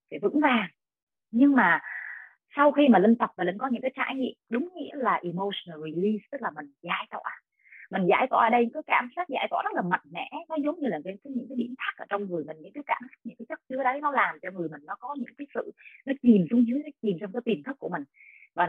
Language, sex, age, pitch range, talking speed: Vietnamese, female, 20-39, 200-285 Hz, 270 wpm